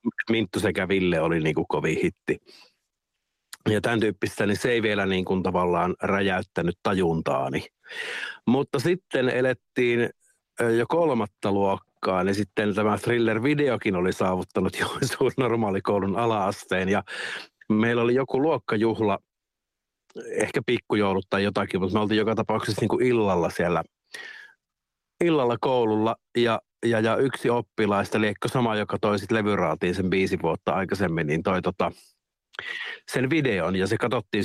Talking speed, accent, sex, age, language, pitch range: 130 wpm, native, male, 50-69, Finnish, 95-115 Hz